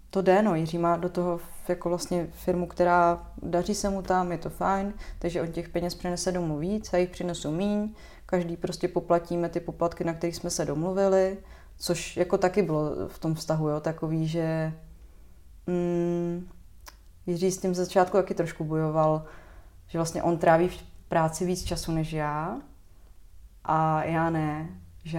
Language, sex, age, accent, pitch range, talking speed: Czech, female, 20-39, native, 155-175 Hz, 170 wpm